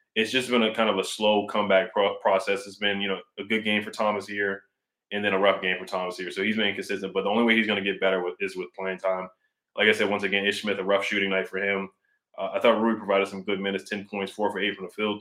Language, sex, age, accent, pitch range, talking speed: English, male, 20-39, American, 100-110 Hz, 295 wpm